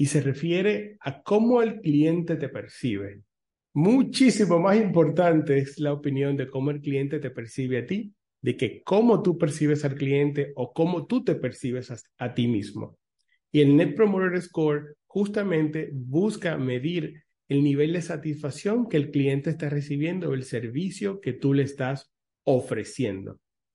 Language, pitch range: English, 130-165 Hz